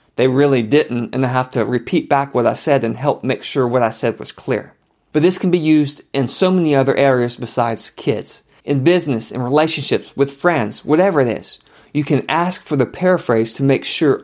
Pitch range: 120-150 Hz